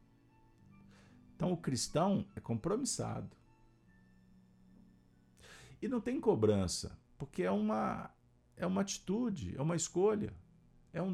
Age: 50-69